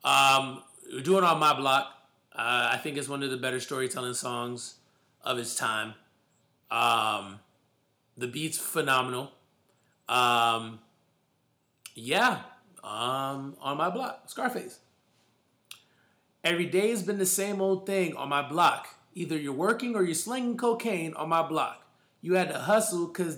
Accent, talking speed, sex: American, 145 wpm, male